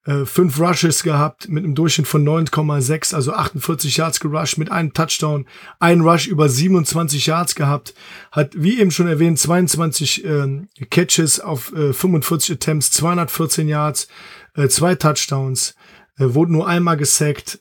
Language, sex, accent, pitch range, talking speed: German, male, German, 145-165 Hz, 150 wpm